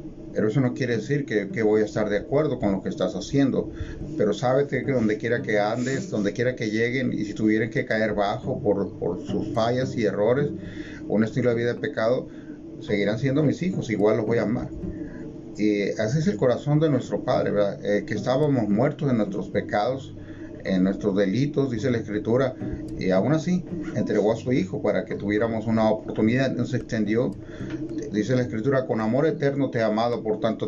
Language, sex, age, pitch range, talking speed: Spanish, male, 40-59, 105-140 Hz, 200 wpm